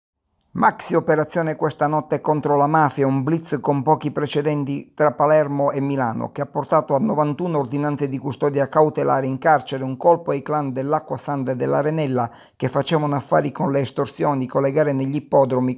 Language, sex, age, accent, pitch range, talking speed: Italian, male, 50-69, native, 135-150 Hz, 165 wpm